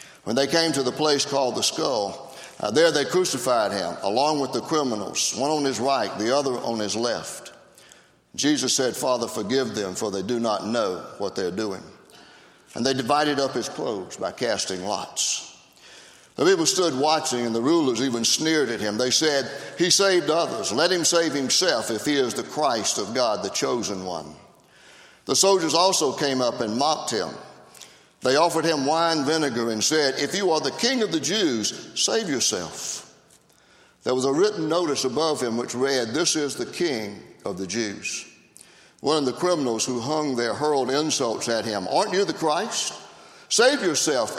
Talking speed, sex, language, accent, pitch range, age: 185 wpm, male, English, American, 130-170 Hz, 60-79